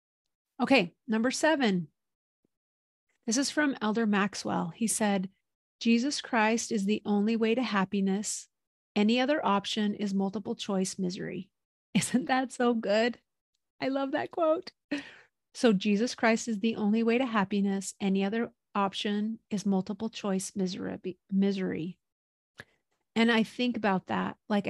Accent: American